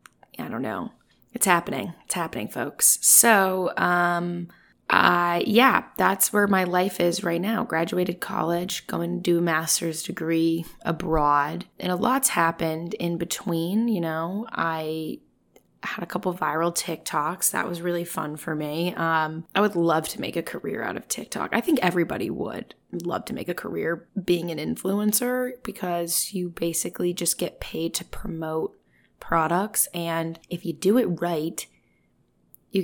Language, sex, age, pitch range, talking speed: English, female, 20-39, 160-185 Hz, 160 wpm